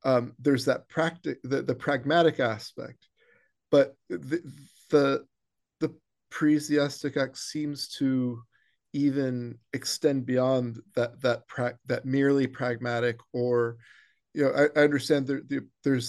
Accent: American